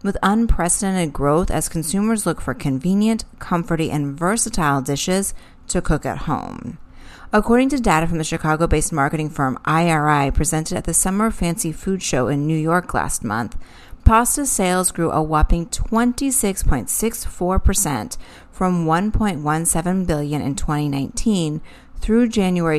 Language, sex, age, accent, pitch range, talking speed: English, female, 30-49, American, 155-200 Hz, 130 wpm